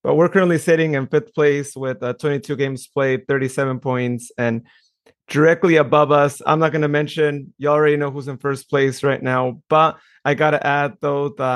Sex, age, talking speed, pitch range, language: male, 30-49, 205 wpm, 135-155 Hz, English